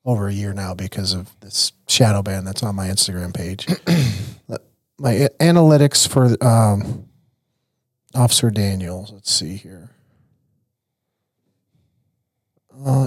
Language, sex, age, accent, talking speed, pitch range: English, male, 40-59, American, 115 wpm, 110-135 Hz